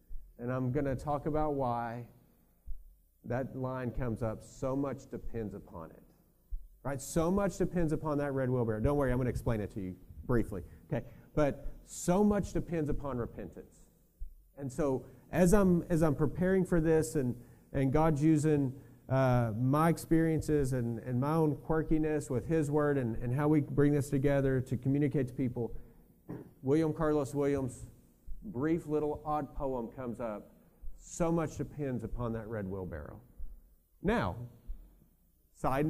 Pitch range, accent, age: 115-155 Hz, American, 40-59